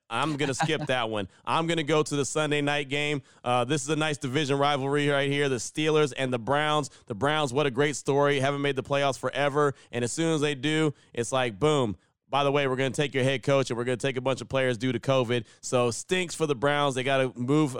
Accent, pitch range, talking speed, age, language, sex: American, 130-145 Hz, 270 wpm, 30-49, English, male